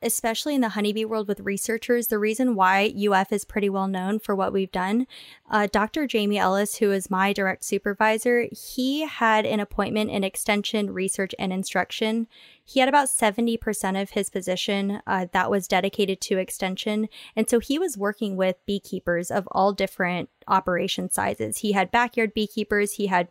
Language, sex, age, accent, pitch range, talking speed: English, female, 20-39, American, 190-220 Hz, 175 wpm